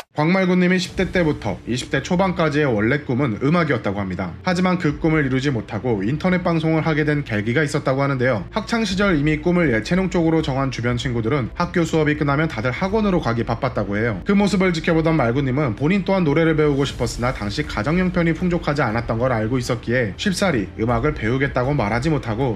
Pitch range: 120-165 Hz